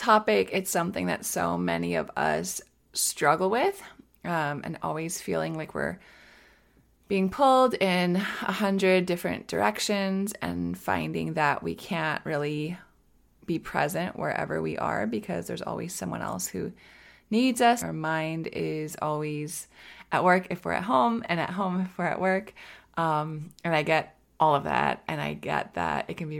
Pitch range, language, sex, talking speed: 135-190 Hz, English, female, 165 wpm